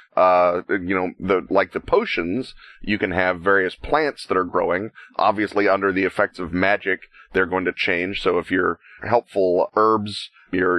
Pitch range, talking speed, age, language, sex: 95-110 Hz, 180 wpm, 30-49, English, male